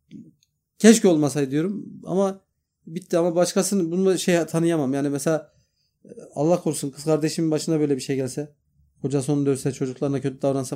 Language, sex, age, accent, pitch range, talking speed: Turkish, male, 40-59, native, 130-185 Hz, 150 wpm